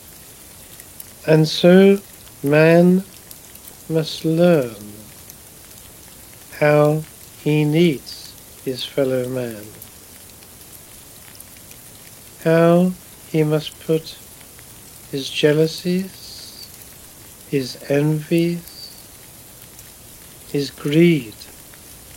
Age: 60-79